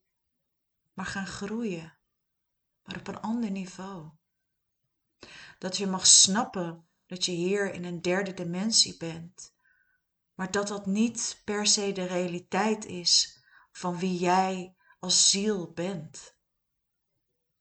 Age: 40-59